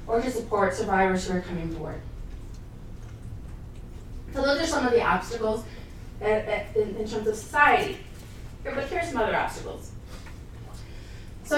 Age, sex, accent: 30-49, female, American